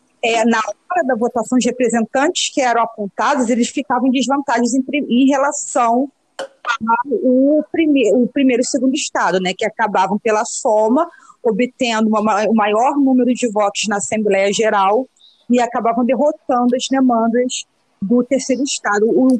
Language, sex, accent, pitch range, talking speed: Portuguese, female, Brazilian, 225-280 Hz, 150 wpm